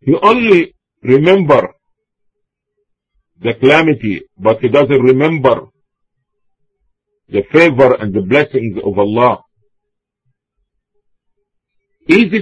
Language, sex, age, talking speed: English, male, 50-69, 80 wpm